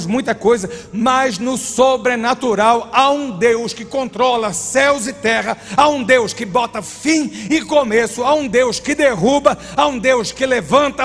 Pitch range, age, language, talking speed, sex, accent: 200-270 Hz, 60-79, Portuguese, 170 wpm, male, Brazilian